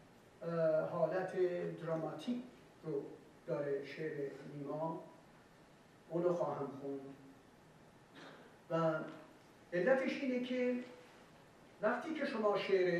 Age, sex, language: 60-79, male, Persian